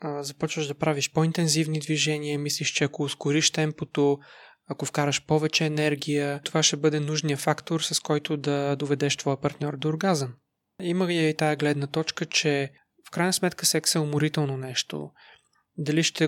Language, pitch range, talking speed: Bulgarian, 145-165 Hz, 155 wpm